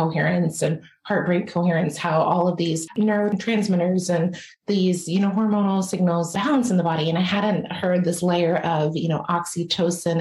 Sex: female